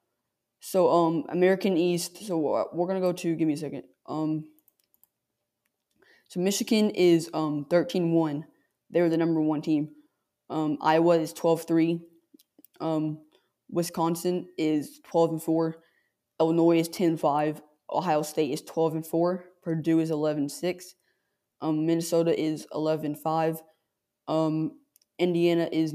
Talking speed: 130 wpm